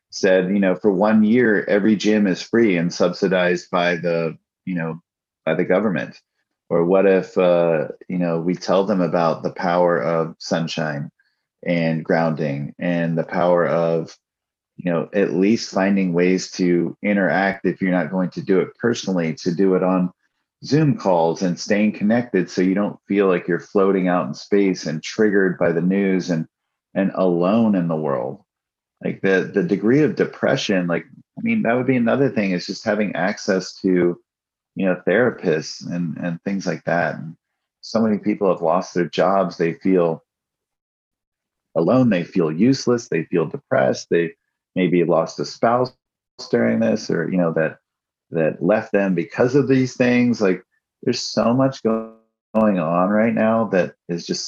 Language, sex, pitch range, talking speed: English, male, 85-105 Hz, 175 wpm